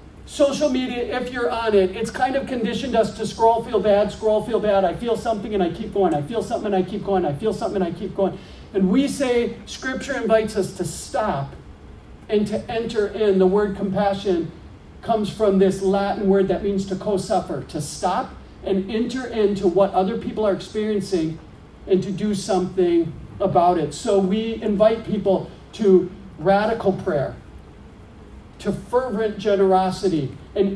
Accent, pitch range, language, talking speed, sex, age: American, 185-220 Hz, English, 175 wpm, male, 40-59